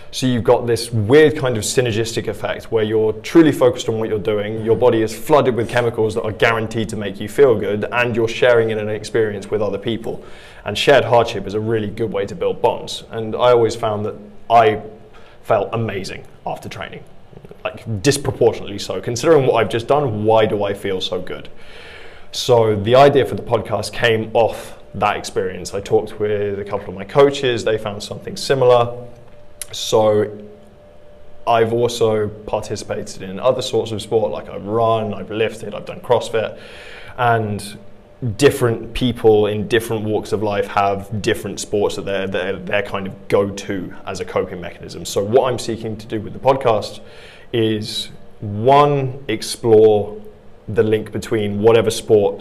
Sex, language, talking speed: male, English, 175 wpm